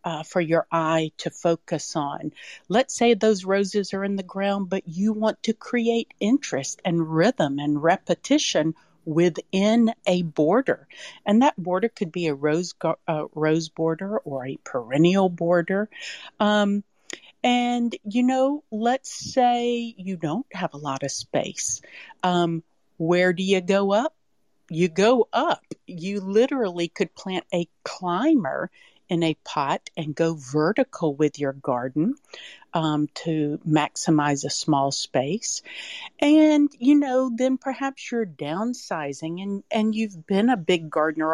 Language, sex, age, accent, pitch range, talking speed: English, female, 50-69, American, 165-230 Hz, 145 wpm